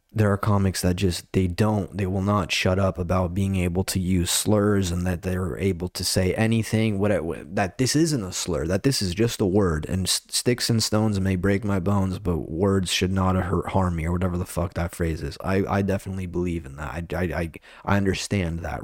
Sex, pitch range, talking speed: male, 90-105 Hz, 225 wpm